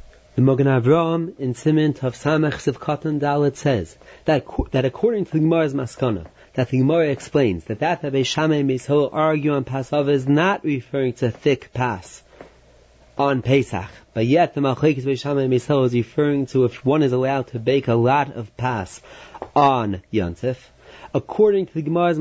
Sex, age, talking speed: male, 30-49, 160 wpm